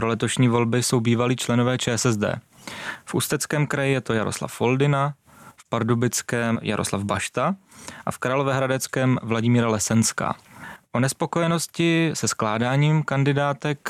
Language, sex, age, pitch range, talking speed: Czech, male, 20-39, 115-130 Hz, 120 wpm